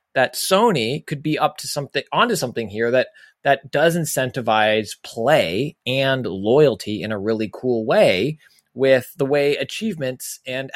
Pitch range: 110-145 Hz